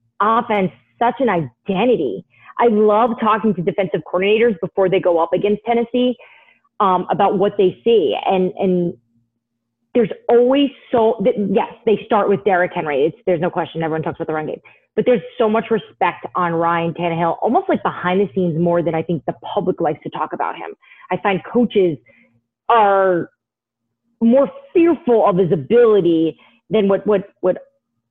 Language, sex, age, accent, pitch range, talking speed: English, female, 30-49, American, 170-225 Hz, 170 wpm